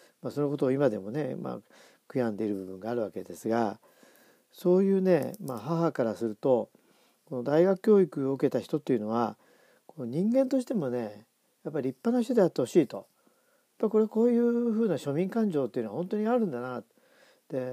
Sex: male